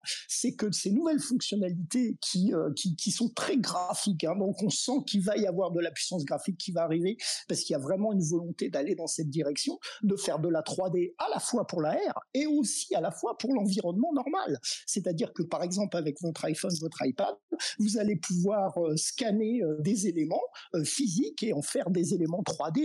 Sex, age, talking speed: male, 50-69, 205 wpm